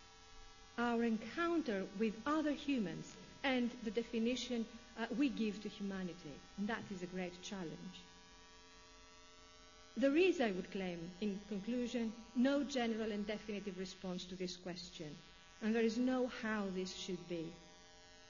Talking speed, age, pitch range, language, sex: 140 wpm, 50-69, 185-265 Hz, English, female